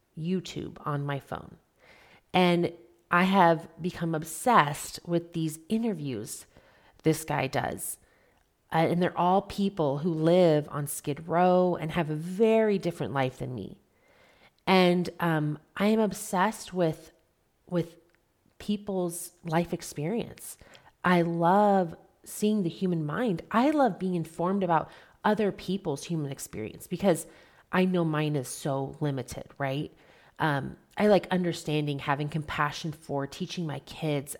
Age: 30-49